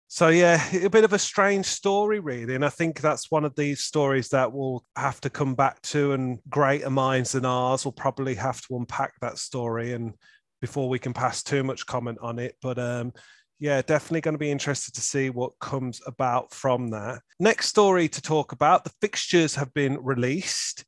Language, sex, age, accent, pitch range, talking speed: English, male, 30-49, British, 130-165 Hz, 205 wpm